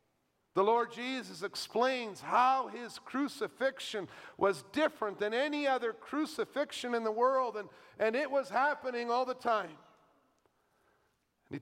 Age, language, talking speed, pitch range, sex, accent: 50-69, English, 130 wpm, 170-235 Hz, male, American